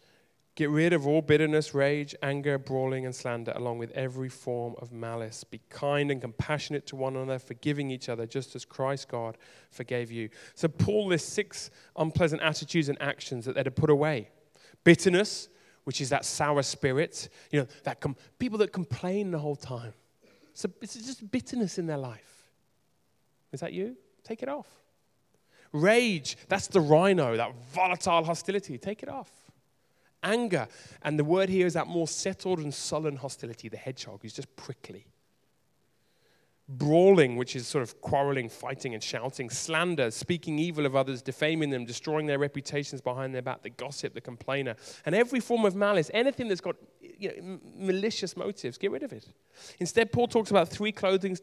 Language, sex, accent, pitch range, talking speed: English, male, British, 130-180 Hz, 175 wpm